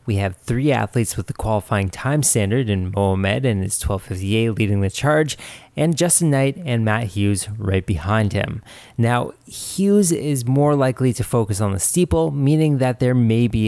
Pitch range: 105-140 Hz